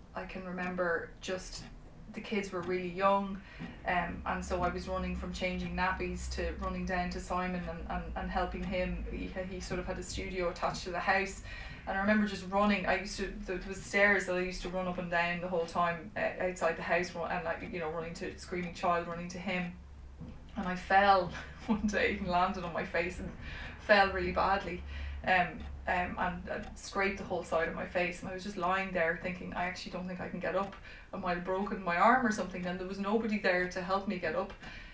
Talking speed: 230 wpm